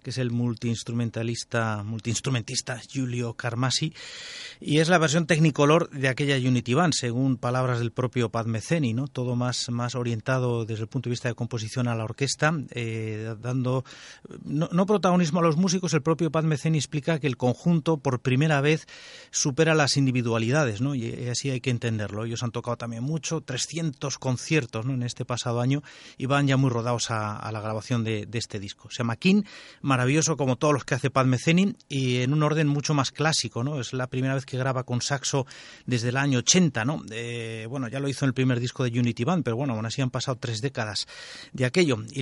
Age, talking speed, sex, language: 30-49, 205 wpm, male, Spanish